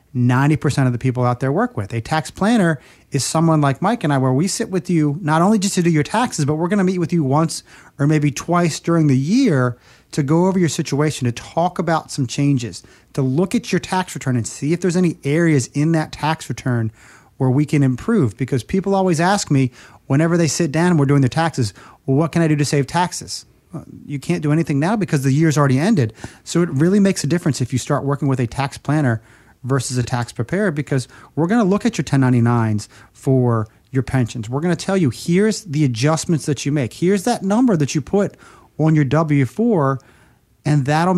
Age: 30-49